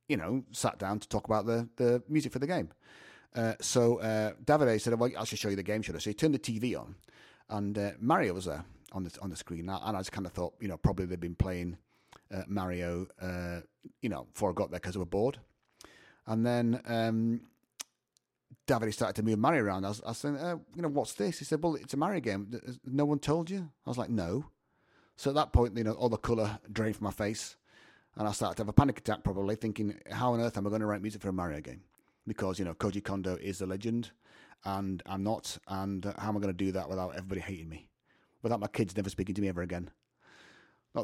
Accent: British